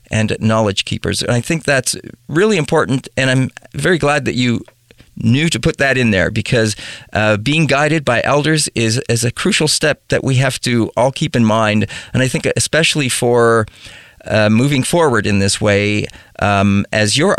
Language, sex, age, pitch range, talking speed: English, male, 40-59, 105-130 Hz, 185 wpm